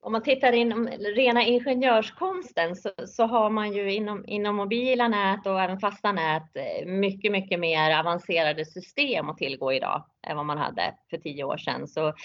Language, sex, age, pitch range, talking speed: Swedish, female, 30-49, 165-210 Hz, 175 wpm